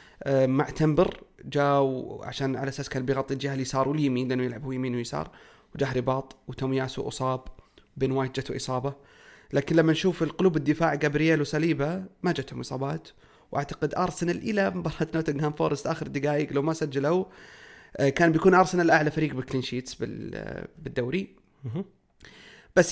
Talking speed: 135 wpm